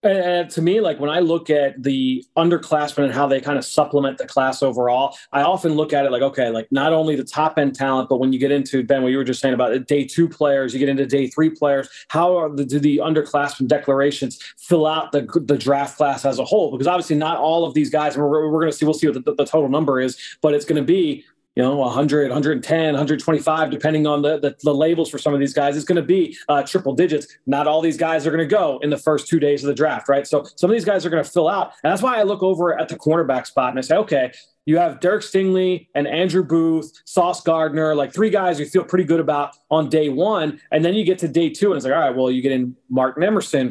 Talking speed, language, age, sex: 270 wpm, English, 30-49, male